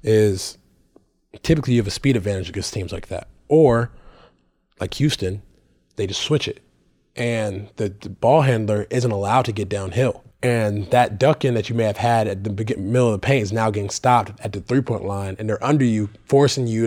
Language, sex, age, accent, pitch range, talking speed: English, male, 20-39, American, 105-125 Hz, 205 wpm